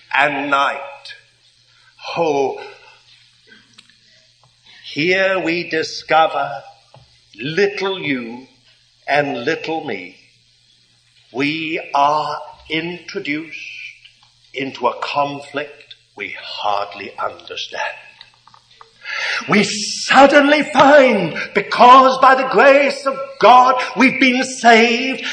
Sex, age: male, 60-79